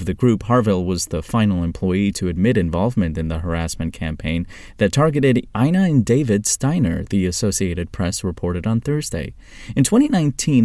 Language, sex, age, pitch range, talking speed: English, male, 30-49, 95-130 Hz, 160 wpm